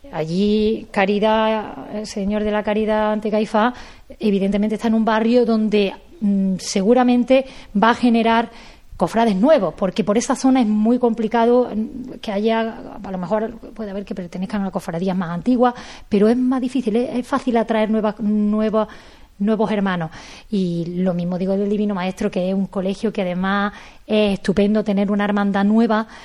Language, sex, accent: Spanish, female, Spanish